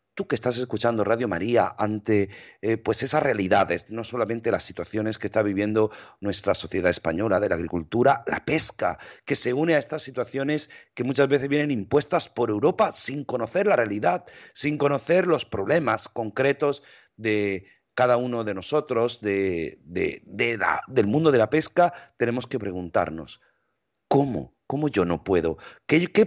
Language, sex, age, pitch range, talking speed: Spanish, male, 40-59, 110-145 Hz, 165 wpm